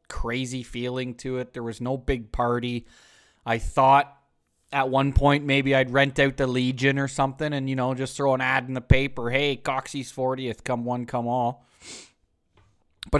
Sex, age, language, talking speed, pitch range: male, 20-39, English, 180 wpm, 115-155 Hz